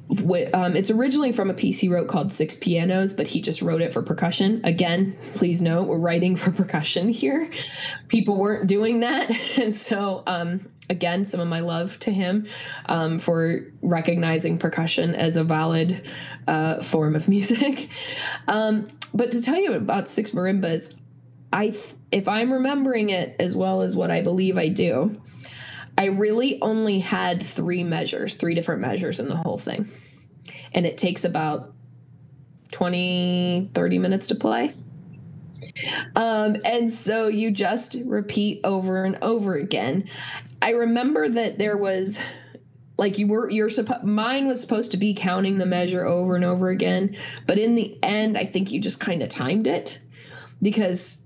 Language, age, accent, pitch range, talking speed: English, 10-29, American, 170-215 Hz, 165 wpm